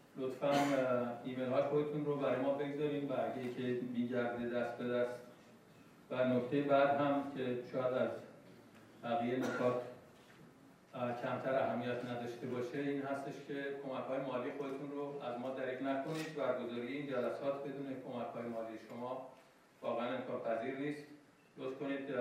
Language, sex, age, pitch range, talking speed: Persian, male, 50-69, 125-150 Hz, 135 wpm